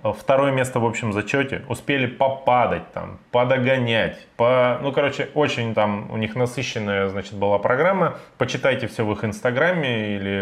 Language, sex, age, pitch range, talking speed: Russian, male, 20-39, 100-130 Hz, 150 wpm